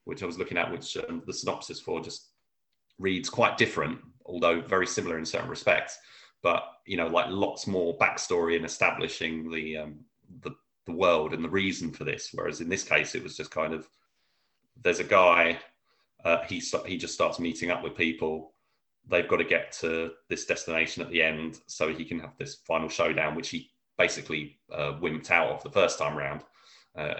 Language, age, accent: English, 30-49, British